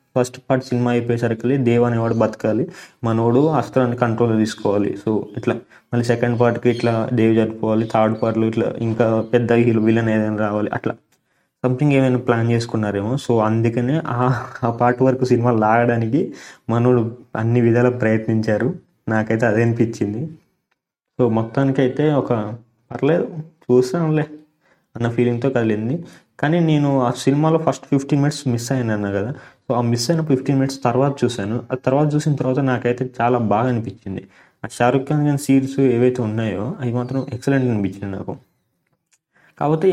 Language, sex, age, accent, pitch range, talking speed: Telugu, male, 20-39, native, 115-140 Hz, 140 wpm